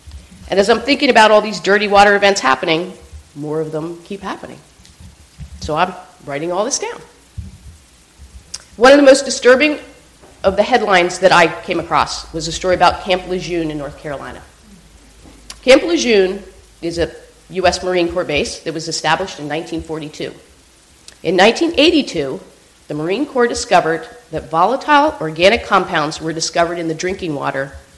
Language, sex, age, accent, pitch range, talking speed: English, female, 40-59, American, 150-220 Hz, 155 wpm